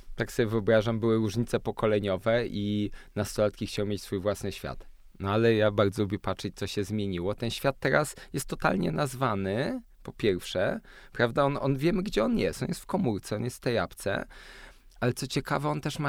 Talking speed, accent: 195 wpm, Polish